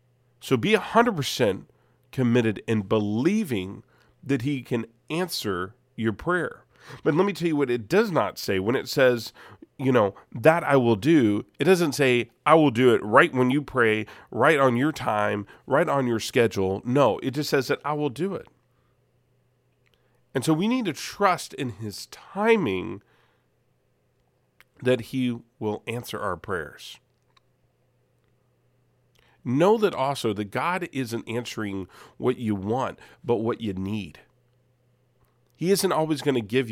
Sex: male